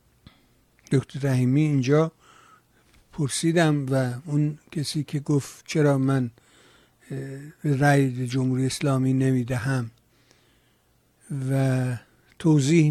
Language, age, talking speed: Persian, 60-79, 90 wpm